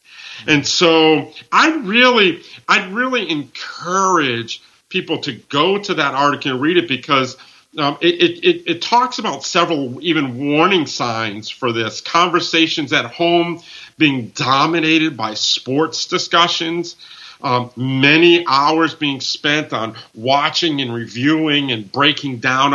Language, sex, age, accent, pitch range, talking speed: English, male, 50-69, American, 125-160 Hz, 130 wpm